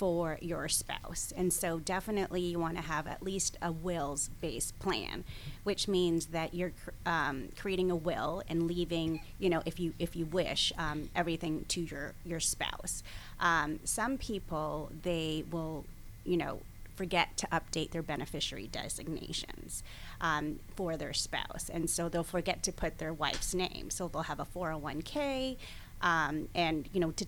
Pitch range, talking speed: 155-175 Hz, 165 wpm